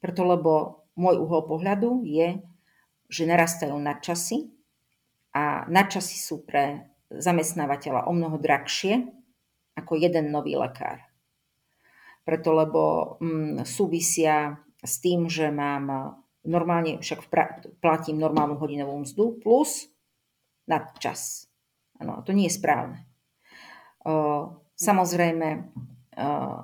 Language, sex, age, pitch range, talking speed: Slovak, female, 40-59, 155-185 Hz, 105 wpm